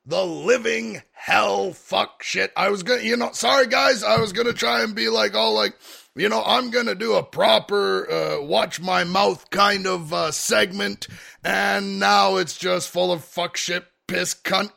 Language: English